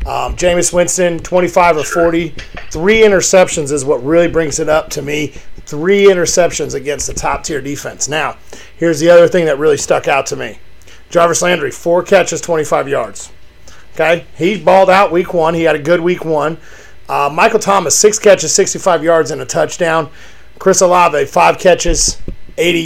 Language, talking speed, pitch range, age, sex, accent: English, 175 wpm, 155-185 Hz, 40-59, male, American